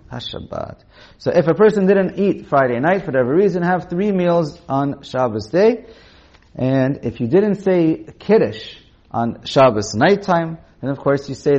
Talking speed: 175 wpm